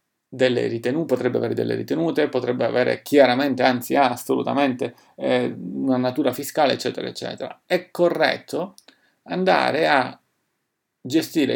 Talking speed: 120 wpm